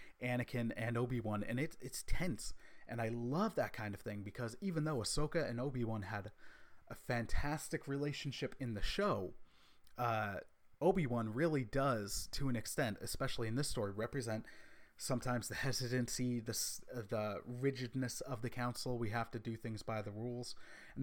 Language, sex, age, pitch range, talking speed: English, male, 30-49, 110-135 Hz, 165 wpm